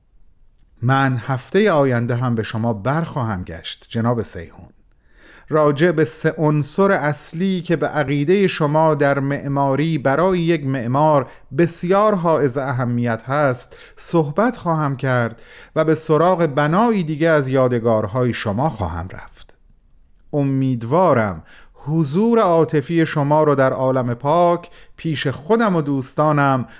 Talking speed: 120 wpm